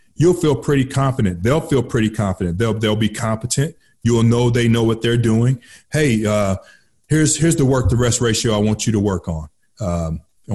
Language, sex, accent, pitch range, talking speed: English, male, American, 105-130 Hz, 195 wpm